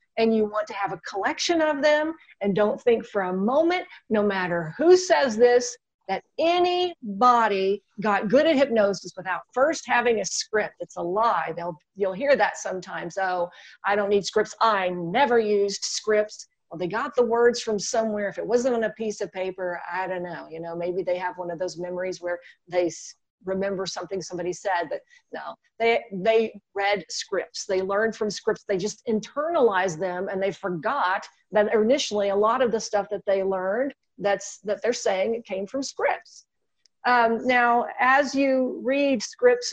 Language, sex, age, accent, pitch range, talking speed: English, female, 40-59, American, 195-245 Hz, 185 wpm